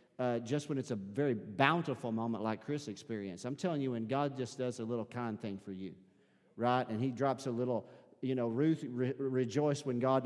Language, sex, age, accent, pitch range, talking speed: English, male, 40-59, American, 130-185 Hz, 215 wpm